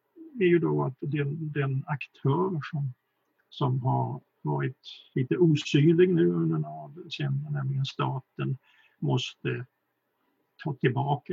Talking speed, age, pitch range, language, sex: 115 wpm, 50-69, 140-165 Hz, Swedish, male